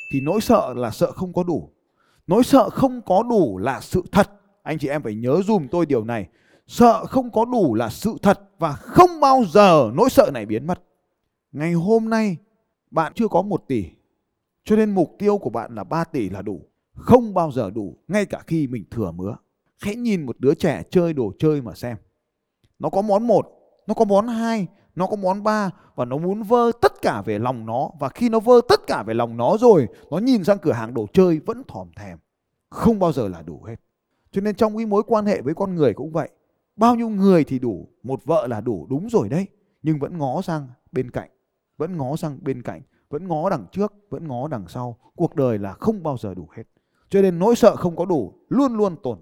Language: Vietnamese